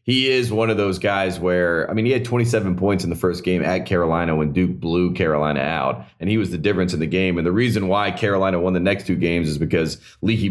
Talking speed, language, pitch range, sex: 255 wpm, English, 90-110 Hz, male